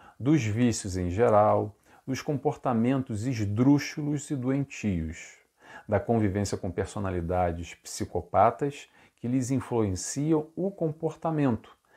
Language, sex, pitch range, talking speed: Portuguese, male, 100-140 Hz, 95 wpm